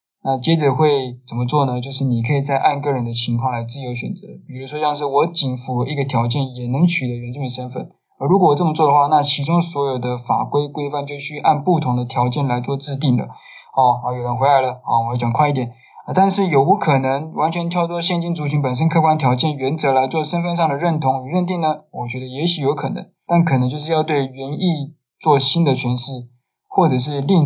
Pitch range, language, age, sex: 130-160 Hz, Chinese, 20-39, male